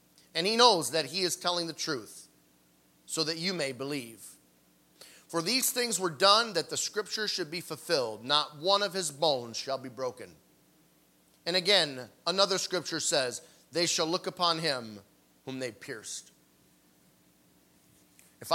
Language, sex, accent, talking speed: English, male, American, 150 wpm